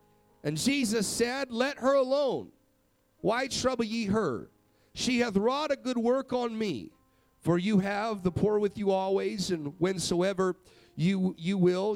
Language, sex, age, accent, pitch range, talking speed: English, male, 40-59, American, 140-230 Hz, 155 wpm